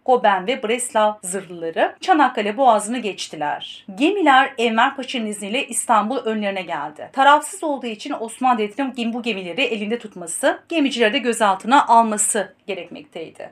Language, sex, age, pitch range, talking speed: Turkish, female, 40-59, 210-270 Hz, 125 wpm